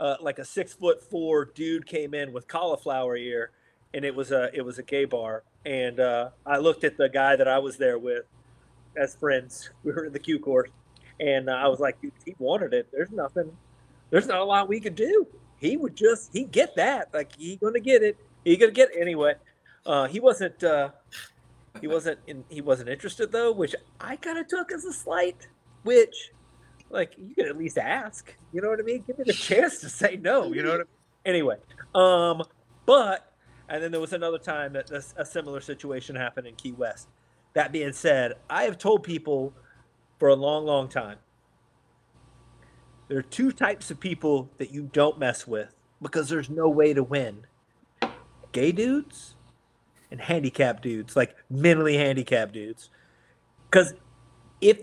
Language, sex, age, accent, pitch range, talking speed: English, male, 30-49, American, 130-200 Hz, 190 wpm